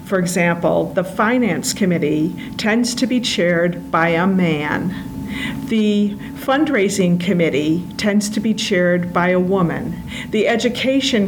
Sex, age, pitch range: female, 50-69, 175-220 Hz